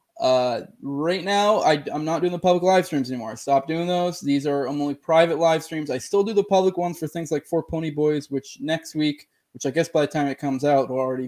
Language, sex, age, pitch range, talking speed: English, male, 20-39, 130-160 Hz, 255 wpm